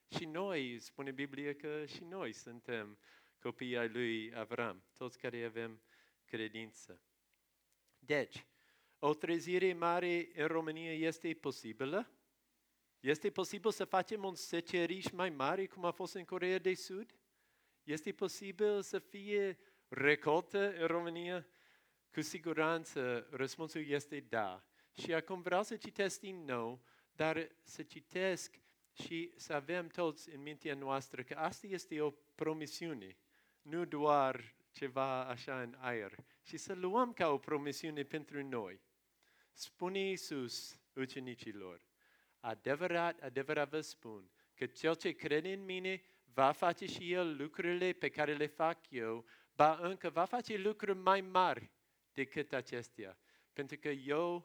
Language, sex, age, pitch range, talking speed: Romanian, male, 50-69, 135-180 Hz, 135 wpm